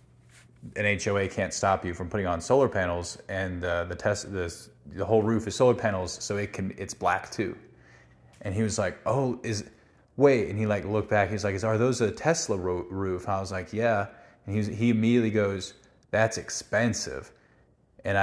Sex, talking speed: male, 195 wpm